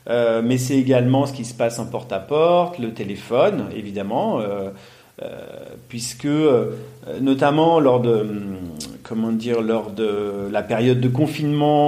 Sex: male